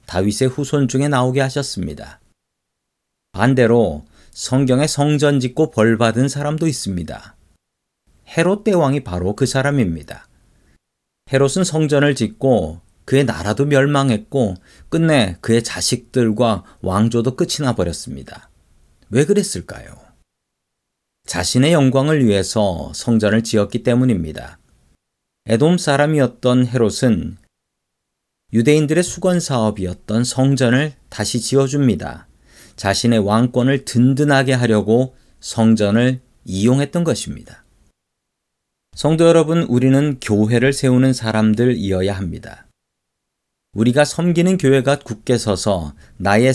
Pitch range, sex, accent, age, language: 100-135 Hz, male, native, 40-59, Korean